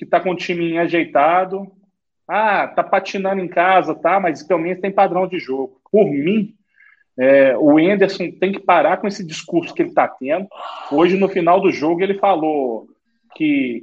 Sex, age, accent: male, 40-59, Brazilian